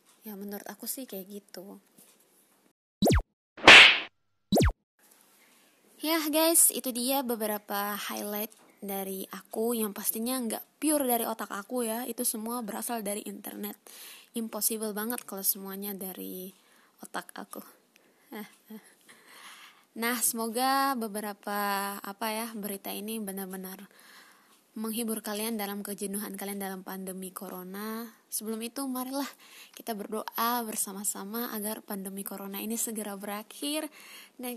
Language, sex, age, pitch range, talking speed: Indonesian, female, 20-39, 200-240 Hz, 110 wpm